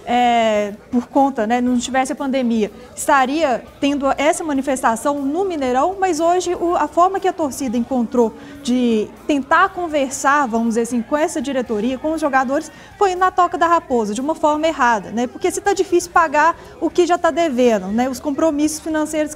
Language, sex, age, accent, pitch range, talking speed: Portuguese, female, 20-39, Brazilian, 265-350 Hz, 185 wpm